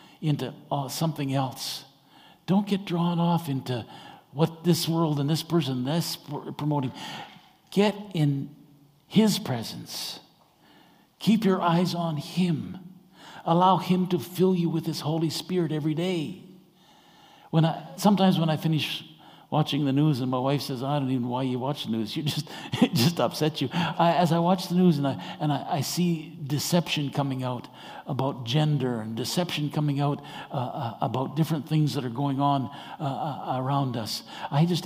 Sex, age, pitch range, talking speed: male, 60-79, 140-175 Hz, 175 wpm